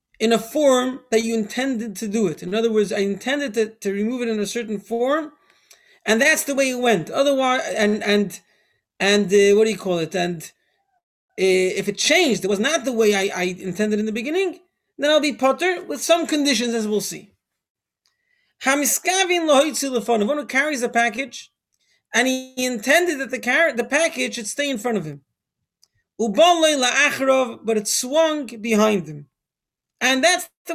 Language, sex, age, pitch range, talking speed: English, male, 30-49, 220-295 Hz, 180 wpm